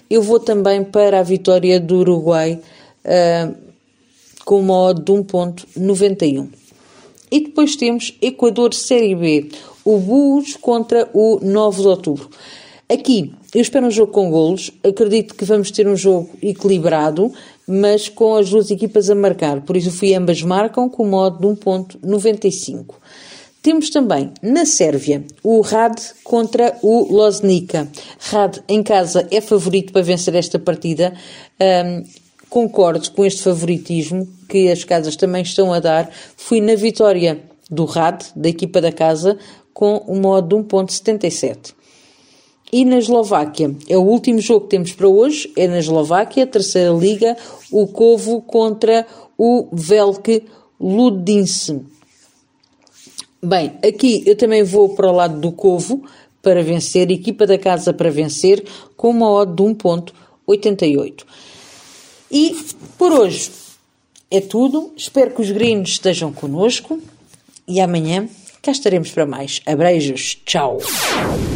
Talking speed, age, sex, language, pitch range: 140 wpm, 40-59, female, Portuguese, 175-220 Hz